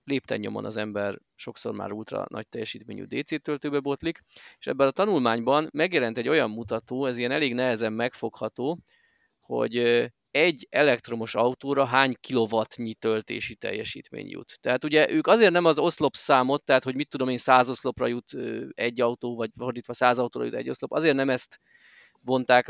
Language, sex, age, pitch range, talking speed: Hungarian, male, 20-39, 120-150 Hz, 160 wpm